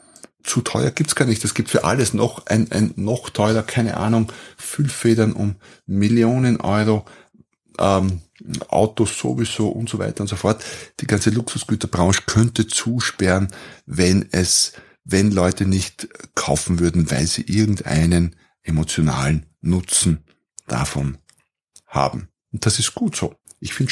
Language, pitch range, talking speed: German, 90-115 Hz, 140 wpm